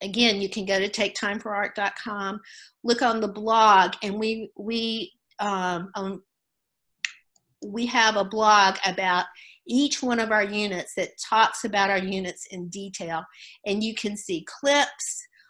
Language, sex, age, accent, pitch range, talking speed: English, female, 50-69, American, 185-225 Hz, 135 wpm